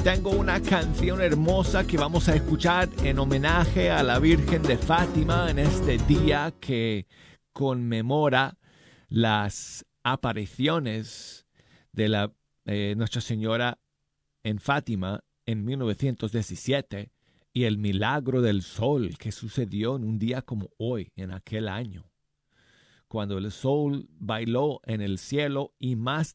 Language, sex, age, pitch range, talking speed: Spanish, male, 40-59, 110-145 Hz, 125 wpm